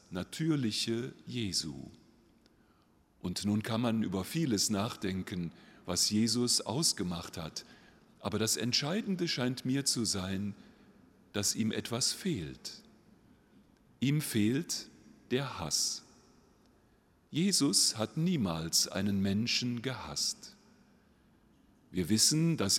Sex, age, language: male, 40-59, German